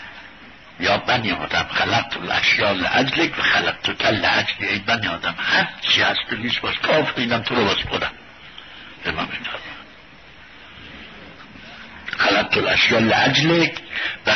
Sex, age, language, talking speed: male, 60-79, Persian, 135 wpm